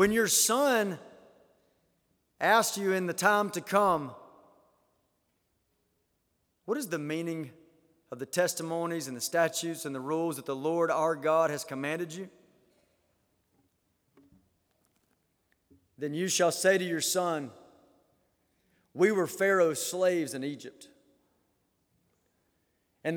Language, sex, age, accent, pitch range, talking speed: English, male, 30-49, American, 160-200 Hz, 115 wpm